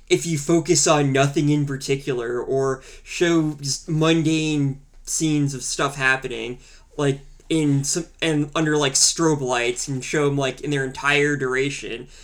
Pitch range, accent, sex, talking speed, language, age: 130-155 Hz, American, male, 150 wpm, English, 20-39